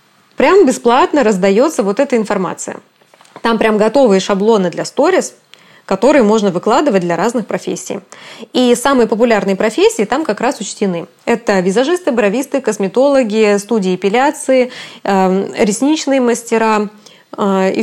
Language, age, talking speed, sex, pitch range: Russian, 20-39, 120 wpm, female, 200-255 Hz